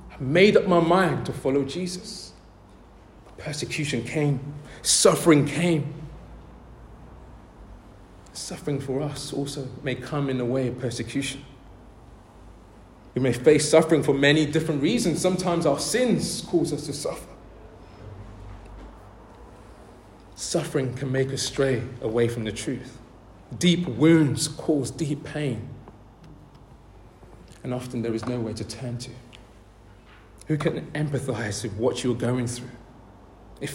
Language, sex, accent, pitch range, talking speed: English, male, British, 115-155 Hz, 125 wpm